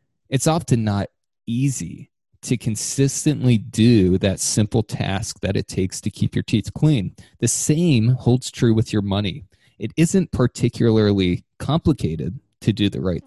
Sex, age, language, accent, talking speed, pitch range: male, 20-39, English, American, 150 wpm, 100-130 Hz